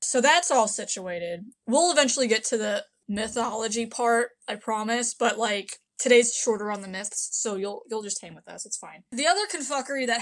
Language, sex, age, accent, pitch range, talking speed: English, female, 20-39, American, 215-260 Hz, 195 wpm